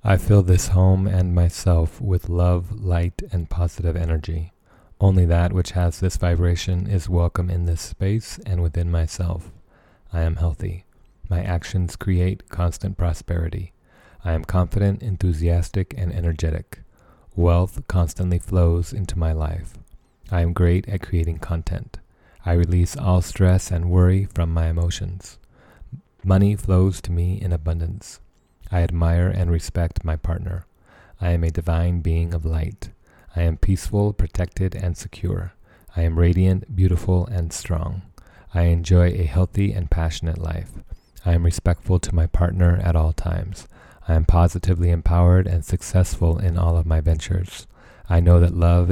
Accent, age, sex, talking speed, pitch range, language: American, 30-49, male, 150 wpm, 85-95 Hz, English